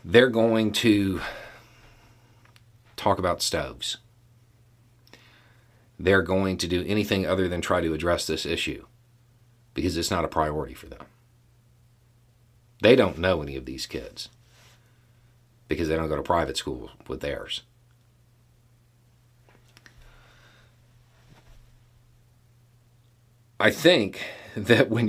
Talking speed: 110 wpm